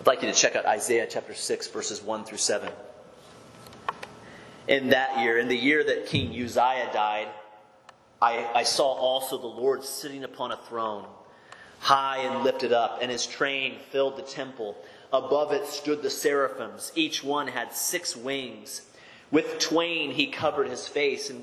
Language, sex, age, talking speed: English, male, 30-49, 170 wpm